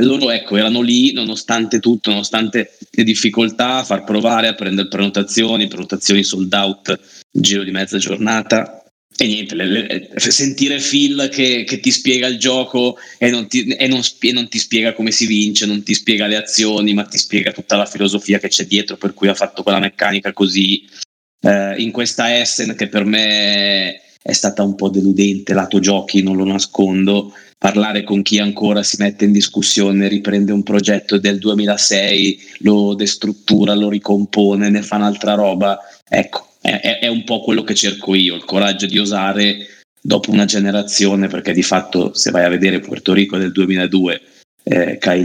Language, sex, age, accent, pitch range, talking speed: Italian, male, 20-39, native, 95-105 Hz, 180 wpm